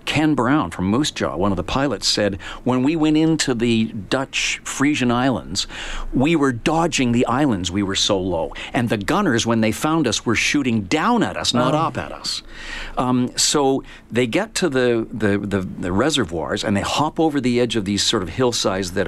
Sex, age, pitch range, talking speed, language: male, 50-69, 100-130 Hz, 200 wpm, English